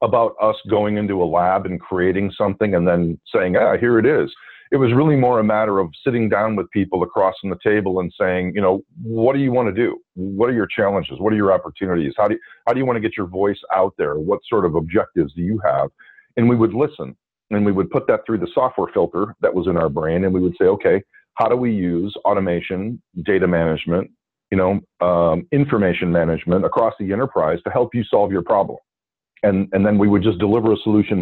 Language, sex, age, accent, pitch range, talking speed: English, male, 40-59, American, 90-115 Hz, 230 wpm